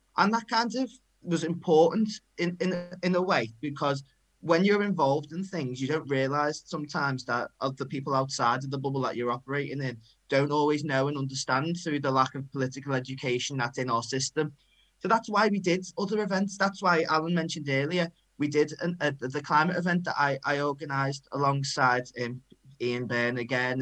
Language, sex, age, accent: English, male, 20-39, British